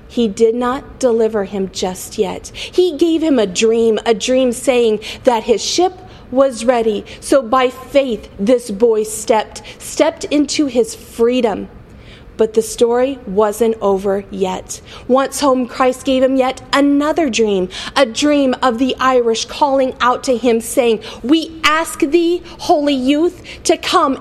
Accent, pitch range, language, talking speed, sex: American, 230-305 Hz, English, 150 wpm, female